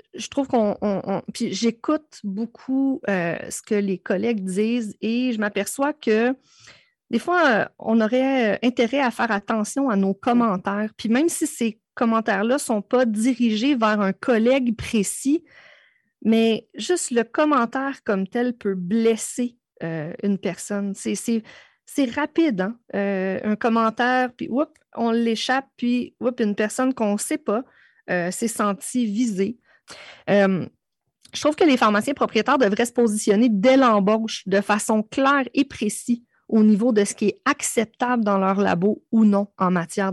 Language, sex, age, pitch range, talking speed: French, female, 30-49, 205-250 Hz, 165 wpm